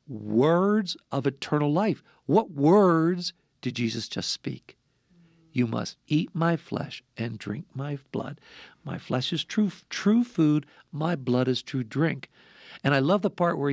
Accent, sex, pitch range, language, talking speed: American, male, 135-195 Hz, English, 155 wpm